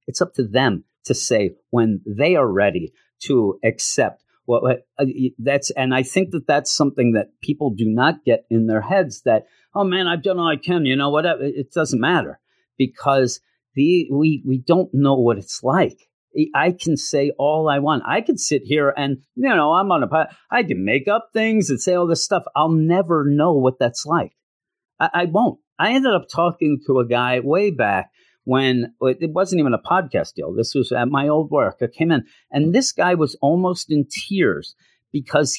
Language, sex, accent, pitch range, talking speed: English, male, American, 140-190 Hz, 205 wpm